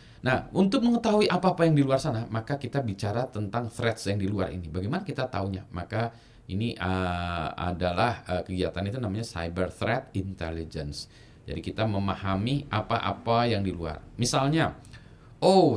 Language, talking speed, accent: Indonesian, 150 wpm, native